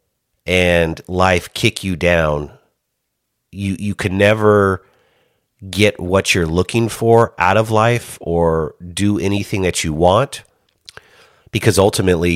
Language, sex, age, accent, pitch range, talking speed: English, male, 30-49, American, 85-115 Hz, 120 wpm